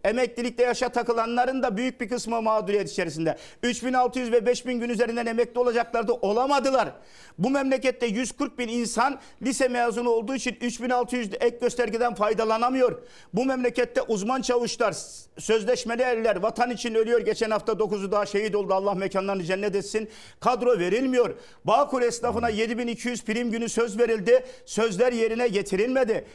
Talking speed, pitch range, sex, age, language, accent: 140 wpm, 215-245 Hz, male, 50-69, Turkish, native